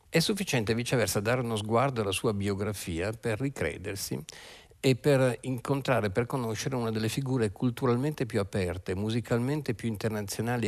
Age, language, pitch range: 50-69, Italian, 95-120 Hz